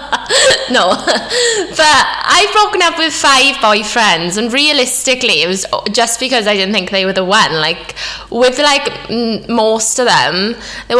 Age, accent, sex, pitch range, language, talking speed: 10-29, British, female, 195-270 Hz, English, 160 wpm